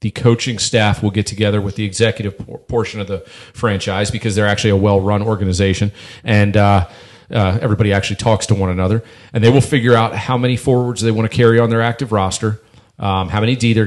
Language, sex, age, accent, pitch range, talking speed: English, male, 40-59, American, 100-115 Hz, 210 wpm